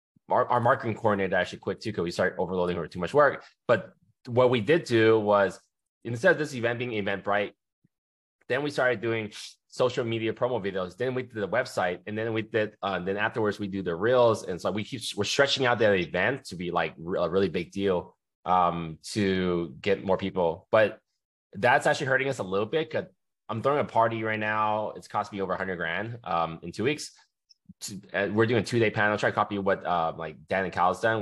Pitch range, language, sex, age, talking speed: 90-110 Hz, English, male, 20-39, 225 wpm